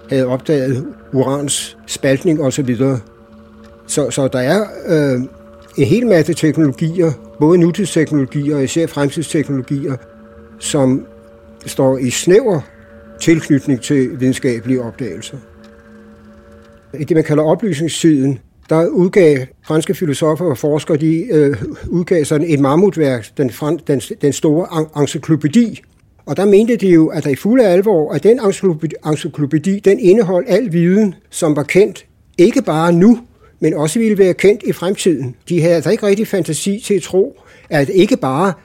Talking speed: 140 wpm